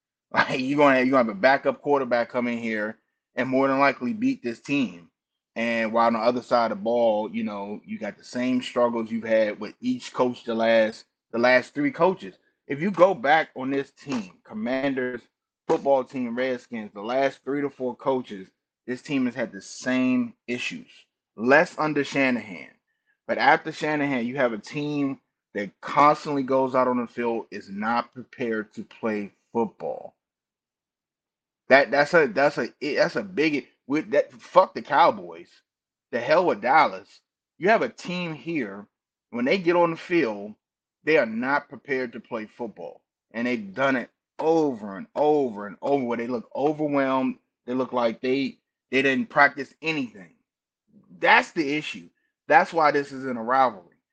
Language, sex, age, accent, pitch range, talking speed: English, male, 20-39, American, 115-145 Hz, 170 wpm